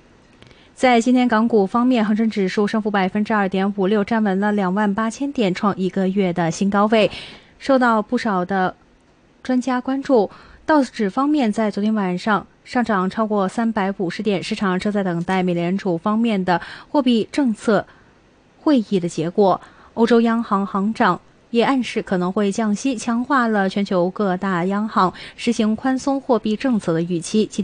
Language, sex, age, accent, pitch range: Chinese, female, 20-39, native, 185-235 Hz